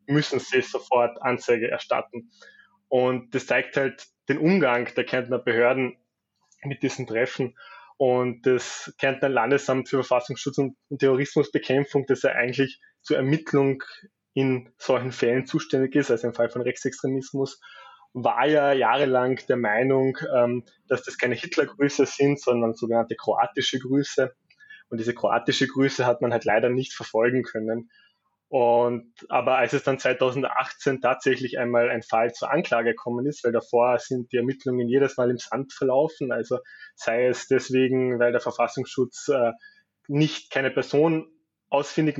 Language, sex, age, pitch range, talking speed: German, male, 20-39, 120-140 Hz, 145 wpm